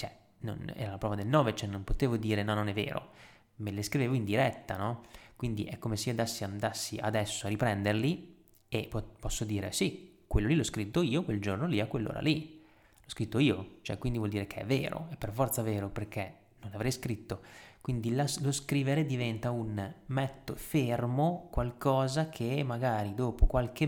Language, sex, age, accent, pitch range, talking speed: Italian, male, 20-39, native, 105-140 Hz, 190 wpm